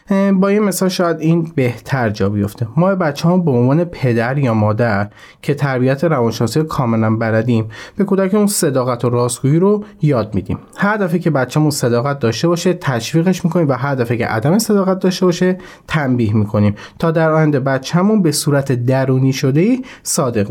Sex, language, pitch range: male, Persian, 120-170 Hz